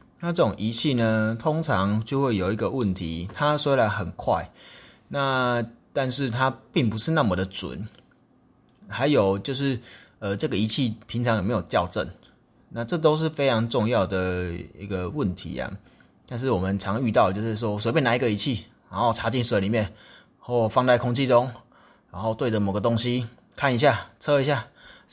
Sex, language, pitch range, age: male, Chinese, 100-130 Hz, 20-39